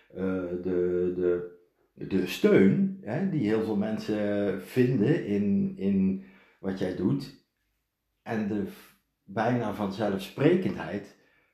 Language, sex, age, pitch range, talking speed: Dutch, male, 50-69, 95-130 Hz, 110 wpm